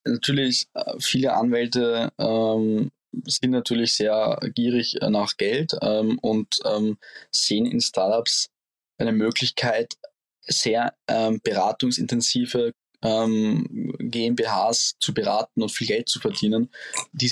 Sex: male